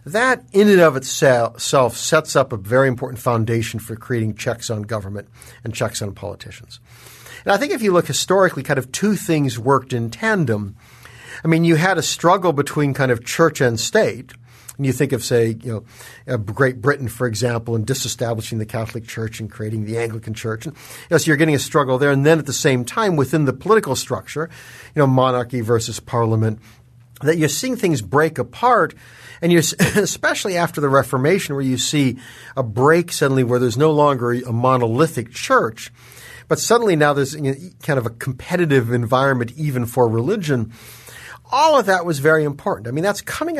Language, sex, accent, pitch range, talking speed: English, male, American, 120-155 Hz, 190 wpm